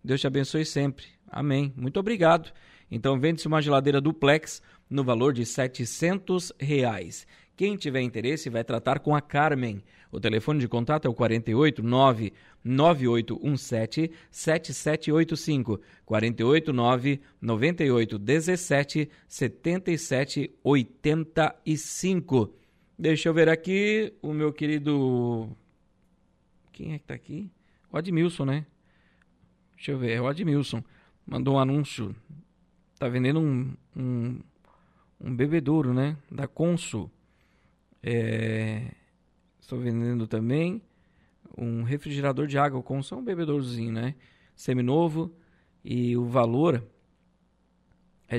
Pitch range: 120-155 Hz